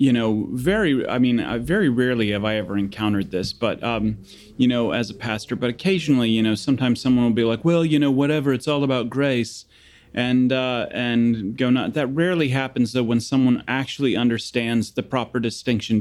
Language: English